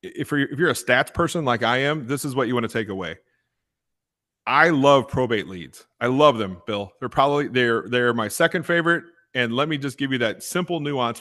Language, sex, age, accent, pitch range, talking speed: English, male, 30-49, American, 120-160 Hz, 215 wpm